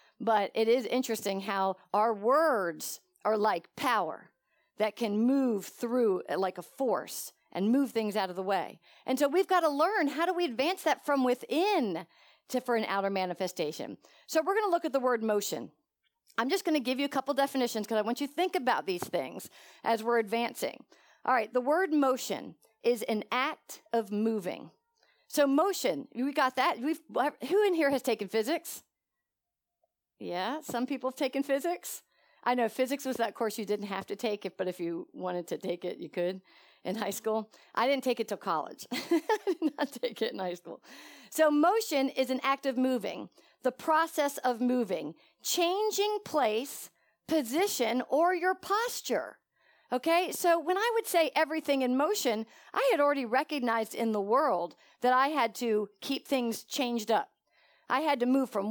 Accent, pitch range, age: American, 220-315 Hz, 50-69